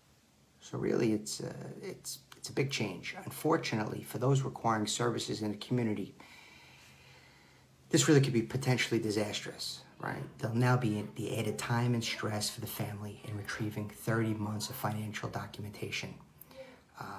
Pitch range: 105-130 Hz